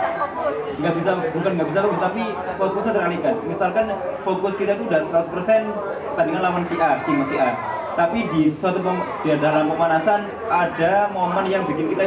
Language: Indonesian